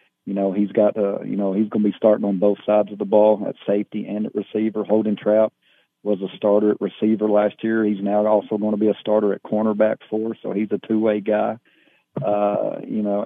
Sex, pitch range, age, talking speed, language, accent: male, 105-110 Hz, 40-59, 240 wpm, English, American